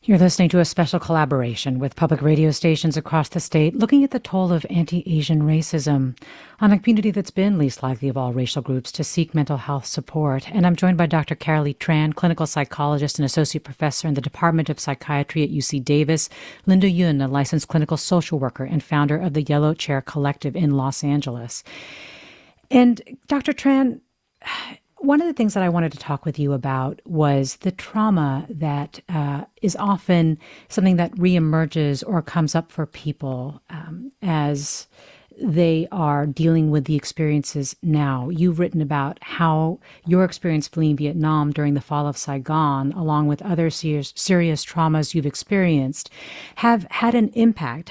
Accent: American